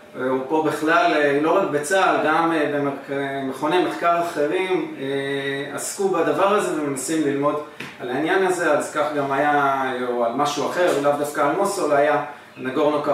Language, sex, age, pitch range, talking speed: Hebrew, male, 30-49, 140-160 Hz, 145 wpm